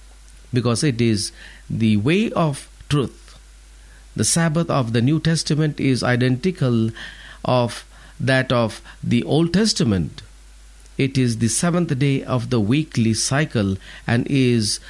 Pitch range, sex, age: 110-155 Hz, male, 50-69